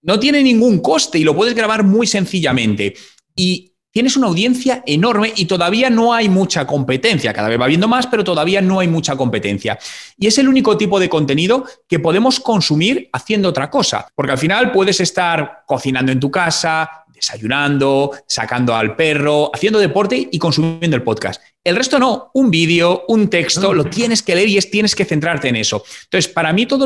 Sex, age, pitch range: male, 30-49, 145-215 Hz